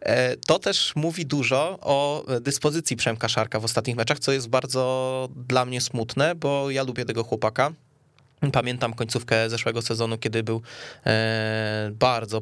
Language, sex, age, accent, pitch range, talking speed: Polish, male, 20-39, native, 115-135 Hz, 140 wpm